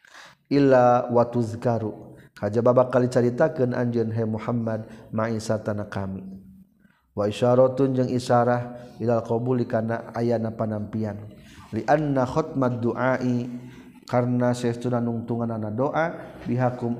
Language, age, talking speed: Indonesian, 50-69, 115 wpm